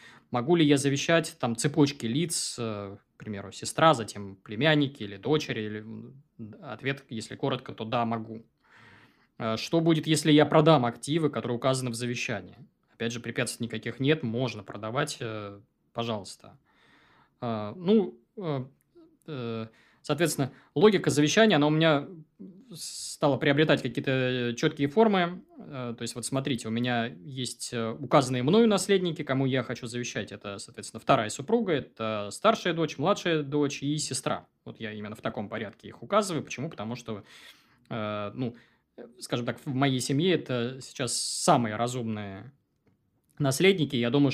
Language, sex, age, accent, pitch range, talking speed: Russian, male, 20-39, native, 115-155 Hz, 135 wpm